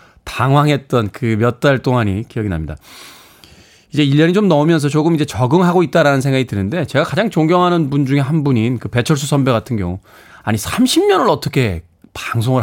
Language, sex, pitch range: Korean, male, 115-155 Hz